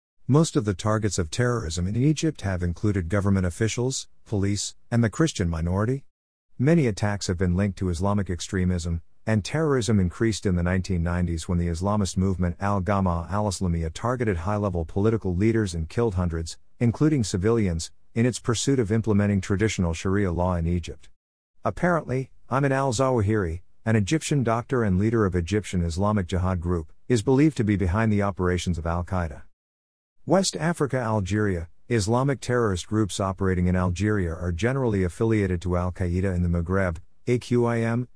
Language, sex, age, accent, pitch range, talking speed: English, male, 50-69, American, 90-115 Hz, 155 wpm